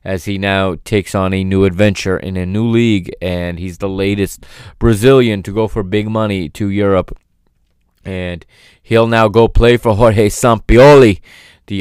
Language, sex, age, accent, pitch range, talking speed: English, male, 20-39, American, 95-115 Hz, 170 wpm